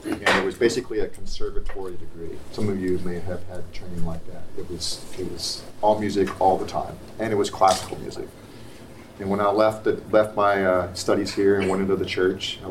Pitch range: 90-110 Hz